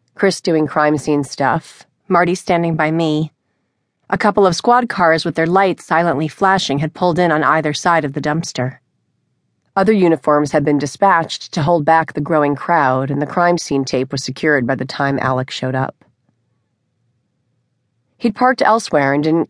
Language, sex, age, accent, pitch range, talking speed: English, female, 40-59, American, 130-165 Hz, 175 wpm